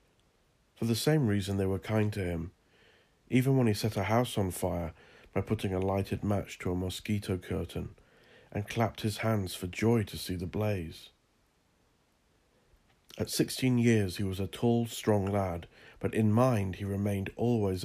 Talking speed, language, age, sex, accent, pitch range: 170 wpm, English, 50-69, male, British, 95-110 Hz